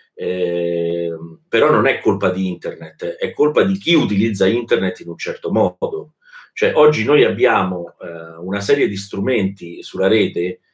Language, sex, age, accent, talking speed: Italian, male, 40-59, native, 155 wpm